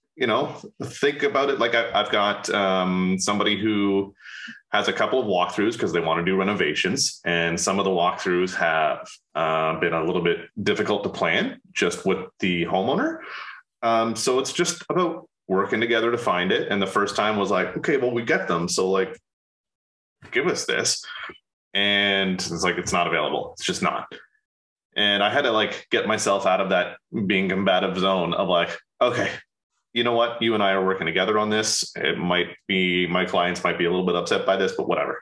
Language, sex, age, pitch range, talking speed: English, male, 30-49, 95-115 Hz, 200 wpm